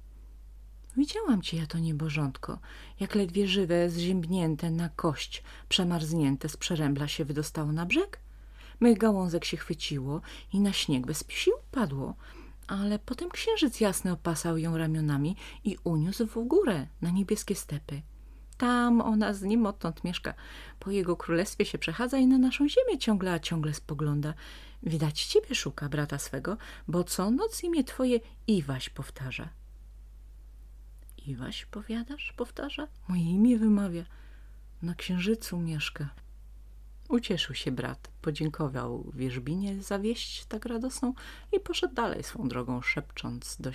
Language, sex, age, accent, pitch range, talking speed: Polish, female, 30-49, native, 145-225 Hz, 135 wpm